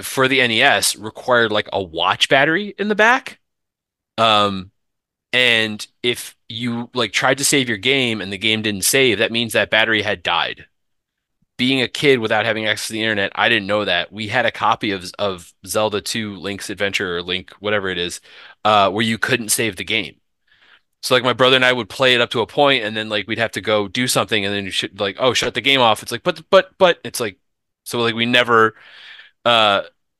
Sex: male